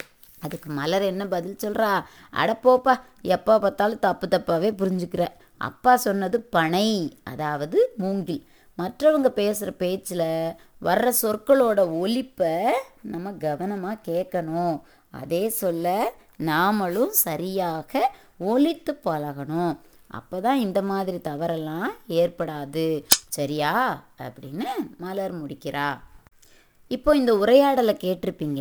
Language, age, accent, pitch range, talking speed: Tamil, 20-39, native, 160-220 Hz, 90 wpm